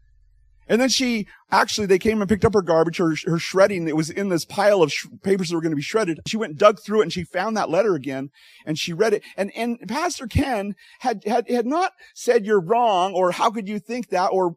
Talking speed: 255 wpm